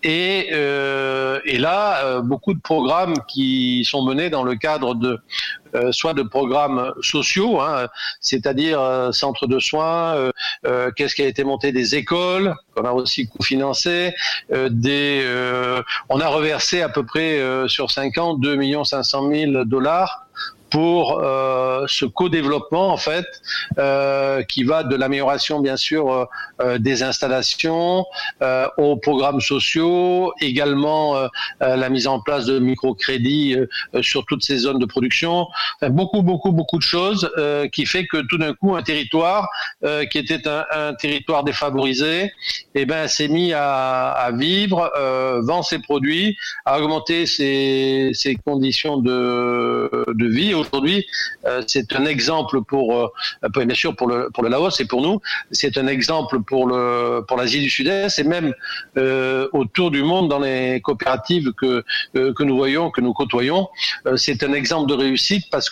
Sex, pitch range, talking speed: male, 130-160 Hz, 170 wpm